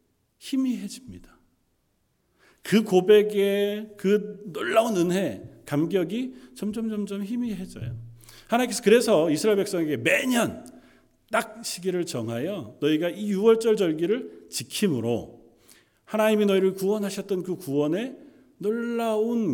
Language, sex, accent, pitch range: Korean, male, native, 125-205 Hz